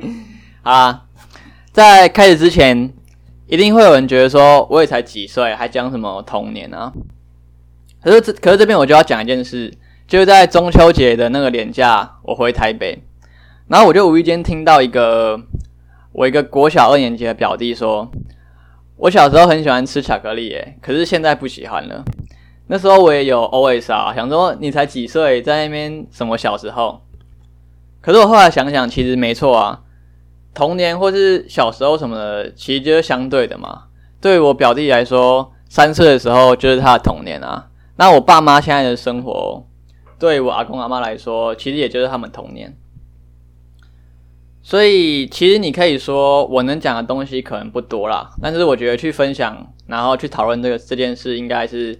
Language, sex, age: Chinese, male, 10-29